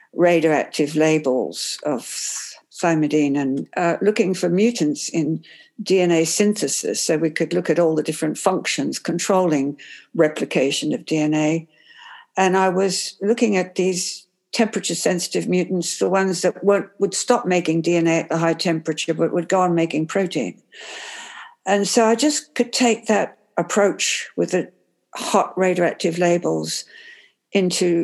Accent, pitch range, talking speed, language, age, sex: British, 160-200 Hz, 140 wpm, English, 60-79, female